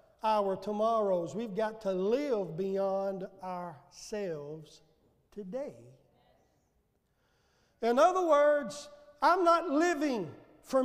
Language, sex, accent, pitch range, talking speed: English, male, American, 210-305 Hz, 90 wpm